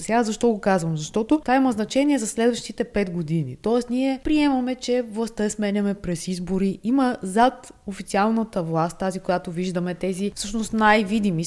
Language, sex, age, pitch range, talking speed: Bulgarian, female, 20-39, 185-230 Hz, 160 wpm